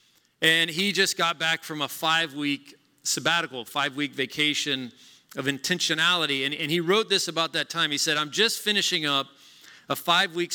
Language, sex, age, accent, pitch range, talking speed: English, male, 40-59, American, 145-180 Hz, 165 wpm